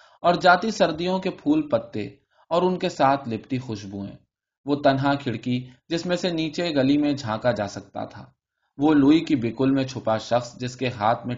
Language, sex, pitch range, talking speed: Urdu, male, 110-150 Hz, 195 wpm